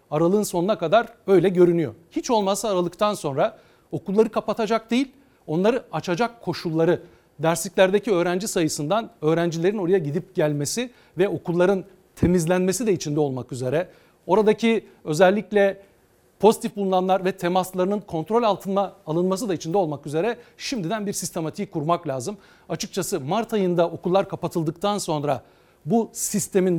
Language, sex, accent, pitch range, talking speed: Turkish, male, native, 165-200 Hz, 125 wpm